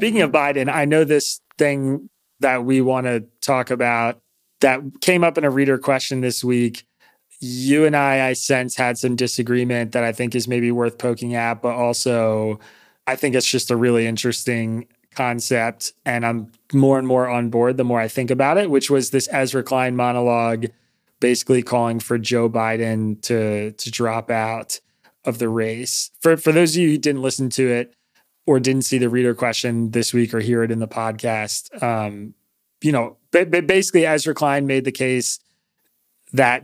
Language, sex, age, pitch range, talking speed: English, male, 20-39, 115-130 Hz, 185 wpm